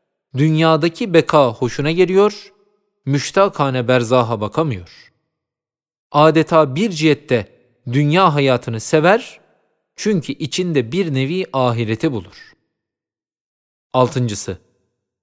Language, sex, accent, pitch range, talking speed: Turkish, male, native, 130-185 Hz, 80 wpm